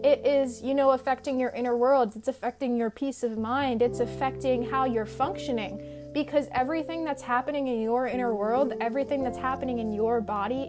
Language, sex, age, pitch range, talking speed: English, female, 20-39, 210-260 Hz, 185 wpm